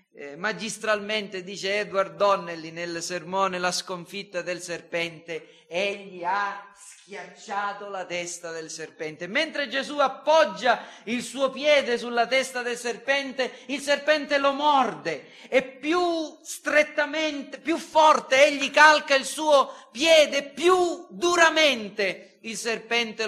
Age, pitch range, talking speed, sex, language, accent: 40-59, 190-270 Hz, 120 wpm, male, Italian, native